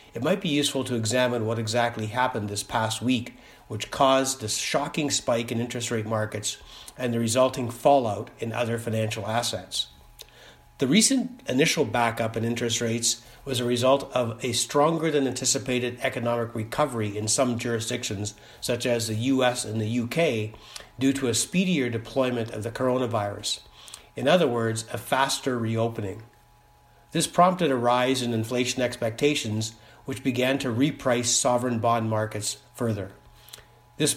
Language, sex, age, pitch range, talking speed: English, male, 60-79, 115-135 Hz, 150 wpm